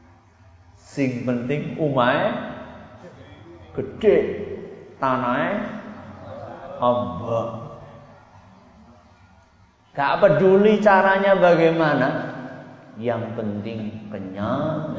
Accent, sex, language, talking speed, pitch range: native, male, Indonesian, 50 wpm, 110-145 Hz